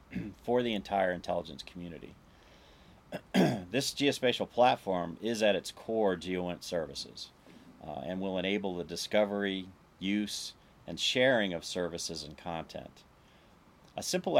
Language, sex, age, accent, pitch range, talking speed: English, male, 40-59, American, 85-105 Hz, 120 wpm